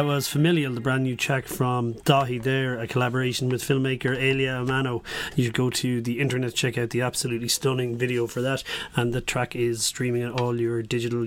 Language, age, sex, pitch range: English, 30-49, male, 120-145 Hz